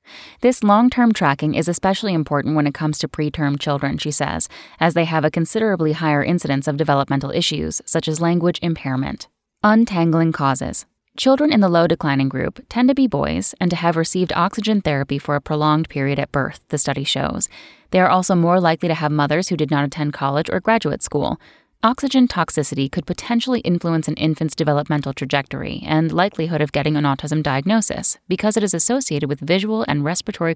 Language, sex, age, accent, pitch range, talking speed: English, female, 10-29, American, 145-185 Hz, 185 wpm